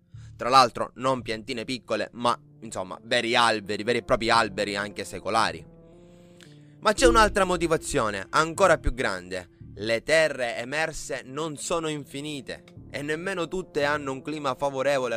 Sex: male